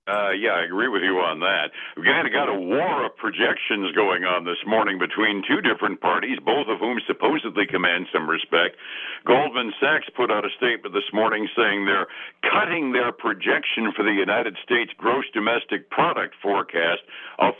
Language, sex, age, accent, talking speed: English, male, 60-79, American, 180 wpm